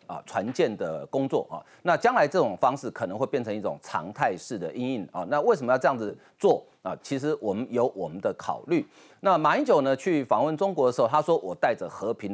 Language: Chinese